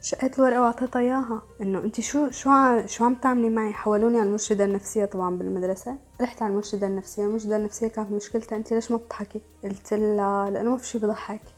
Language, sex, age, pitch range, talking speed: Arabic, female, 20-39, 200-245 Hz, 190 wpm